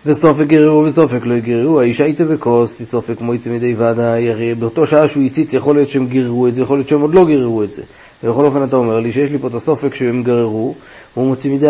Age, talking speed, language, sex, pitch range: 30-49, 225 wpm, Hebrew, male, 125-160 Hz